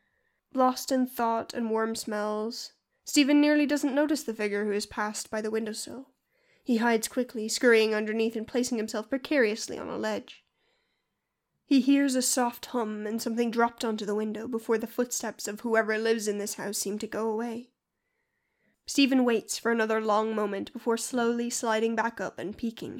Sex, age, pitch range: female, 10-29, 220-275 Hz